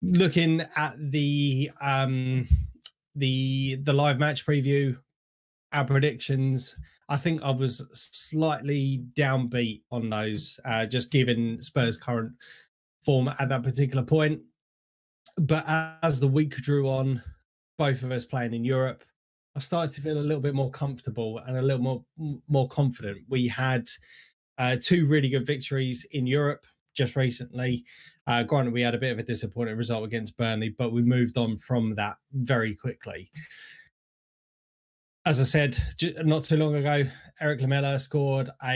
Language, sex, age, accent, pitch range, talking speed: English, male, 20-39, British, 125-150 Hz, 150 wpm